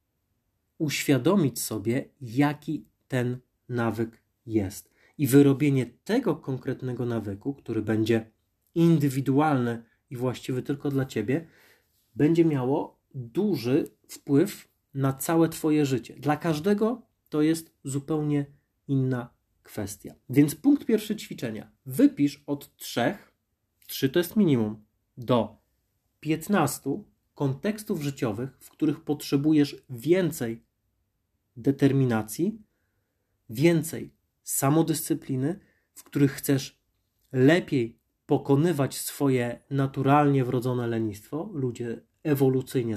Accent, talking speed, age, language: native, 95 wpm, 30-49, Polish